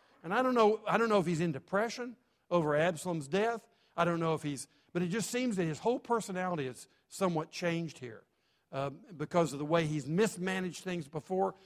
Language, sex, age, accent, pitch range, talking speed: English, male, 50-69, American, 150-195 Hz, 205 wpm